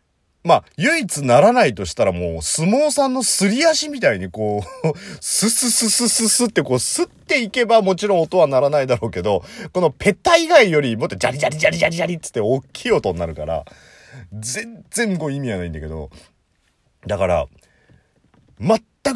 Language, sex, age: Japanese, male, 30-49